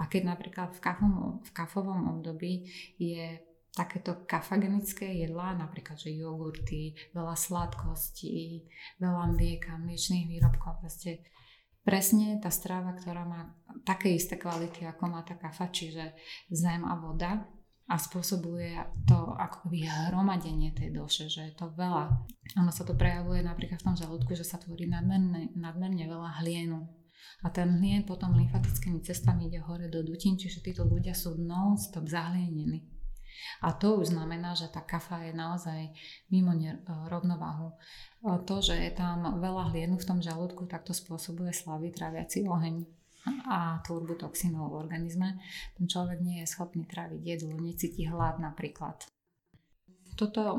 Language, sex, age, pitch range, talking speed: Slovak, female, 20-39, 165-180 Hz, 145 wpm